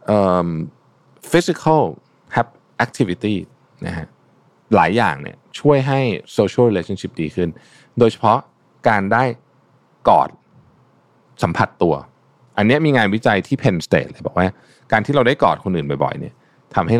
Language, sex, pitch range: Thai, male, 95-125 Hz